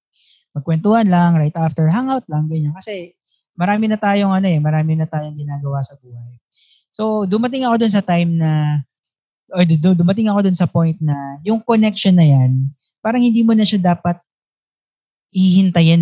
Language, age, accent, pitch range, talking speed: English, 20-39, Filipino, 145-200 Hz, 165 wpm